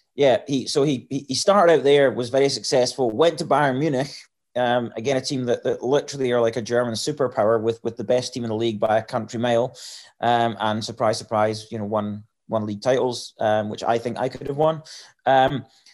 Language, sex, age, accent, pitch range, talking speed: English, male, 30-49, British, 120-150 Hz, 220 wpm